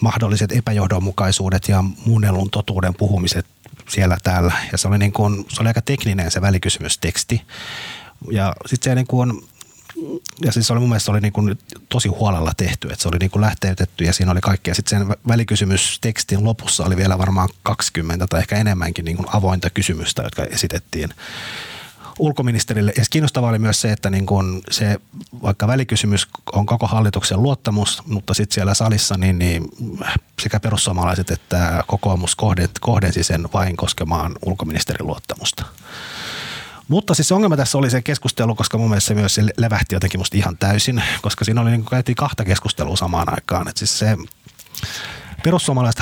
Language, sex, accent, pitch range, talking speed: Finnish, male, native, 95-115 Hz, 145 wpm